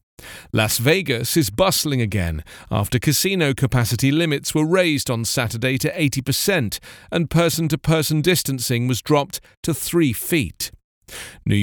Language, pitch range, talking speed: English, 120-165 Hz, 125 wpm